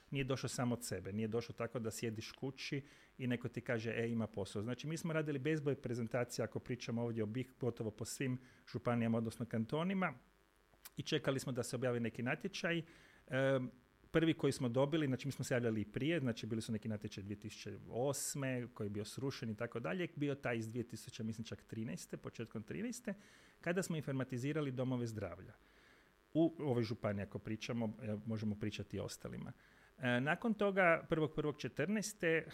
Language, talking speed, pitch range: Croatian, 175 wpm, 115-145 Hz